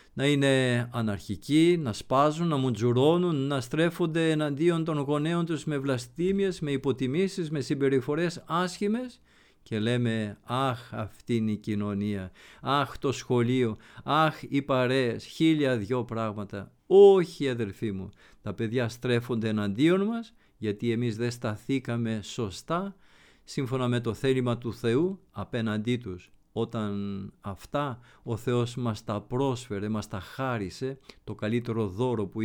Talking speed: 130 wpm